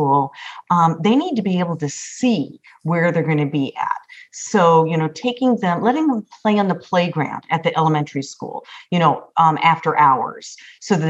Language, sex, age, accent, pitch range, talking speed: English, female, 40-59, American, 155-220 Hz, 195 wpm